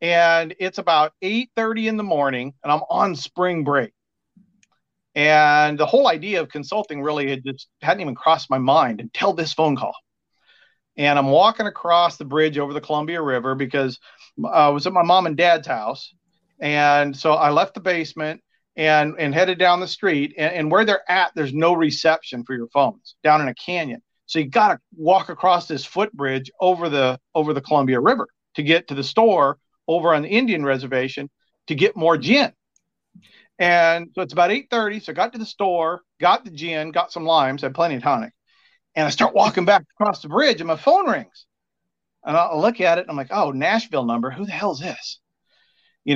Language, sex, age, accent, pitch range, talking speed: English, male, 40-59, American, 145-185 Hz, 200 wpm